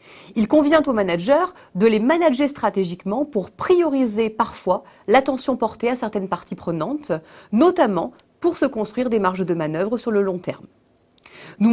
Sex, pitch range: female, 185-275 Hz